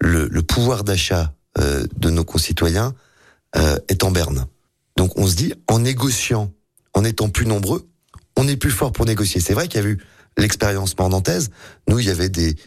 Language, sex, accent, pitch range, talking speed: French, male, French, 85-110 Hz, 195 wpm